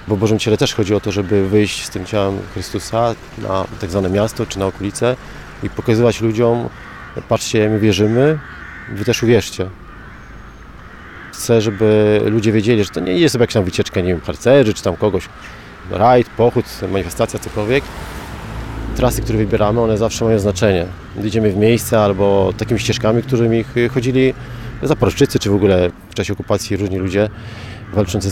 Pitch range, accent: 100-115 Hz, native